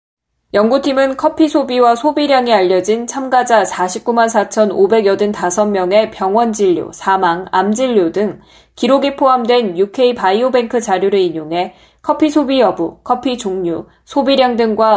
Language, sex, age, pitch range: Korean, female, 20-39, 190-255 Hz